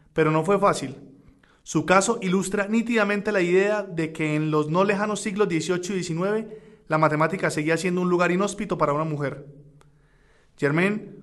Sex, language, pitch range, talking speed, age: male, Spanish, 155-200 Hz, 165 wpm, 20-39